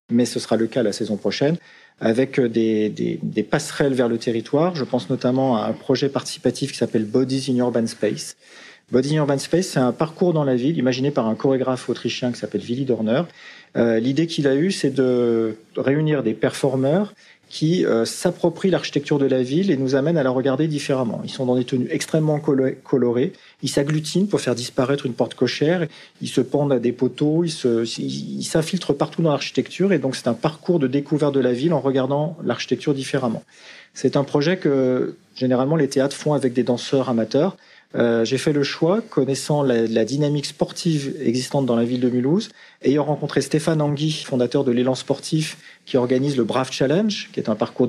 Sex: male